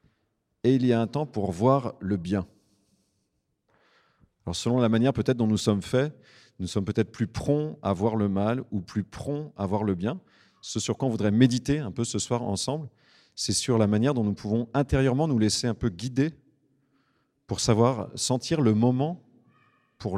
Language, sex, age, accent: French, male, 40-59, French